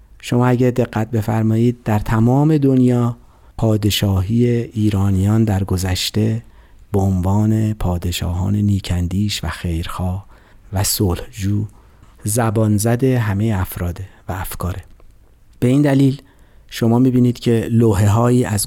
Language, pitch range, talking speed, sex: Persian, 100-120 Hz, 105 wpm, male